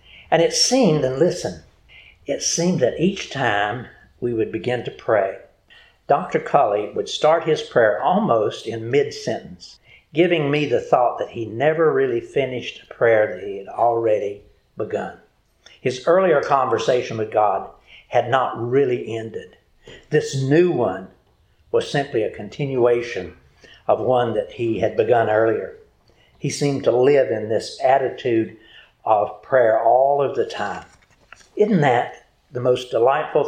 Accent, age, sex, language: American, 60-79, male, English